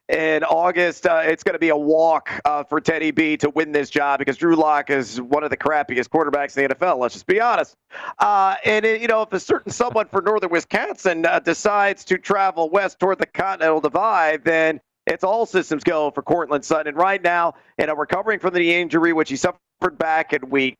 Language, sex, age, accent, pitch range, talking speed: English, male, 40-59, American, 155-190 Hz, 220 wpm